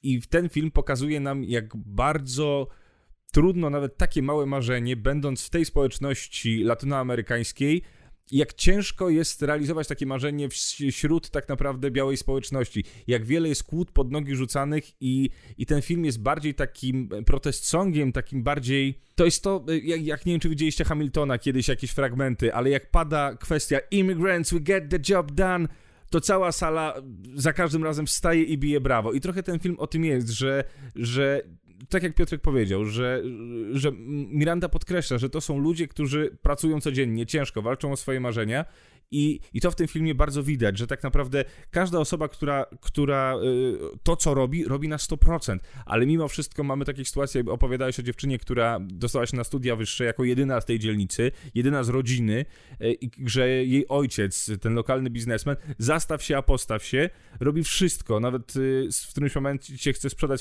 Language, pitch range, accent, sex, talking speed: Polish, 125-155 Hz, native, male, 170 wpm